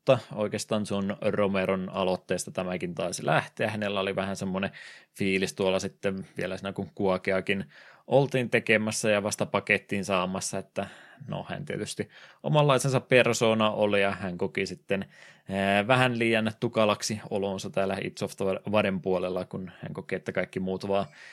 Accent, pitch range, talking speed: native, 95-115 Hz, 140 wpm